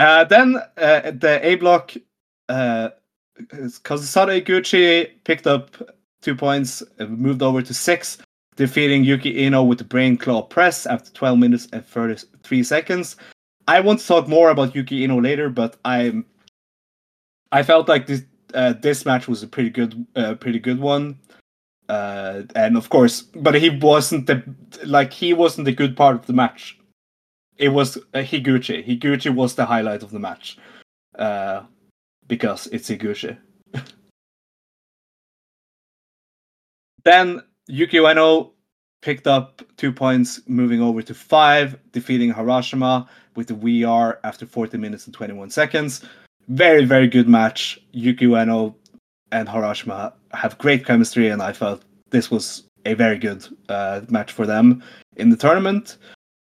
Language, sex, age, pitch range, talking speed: English, male, 30-49, 120-155 Hz, 145 wpm